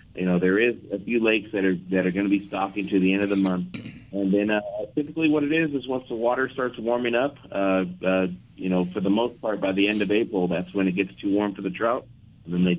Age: 30-49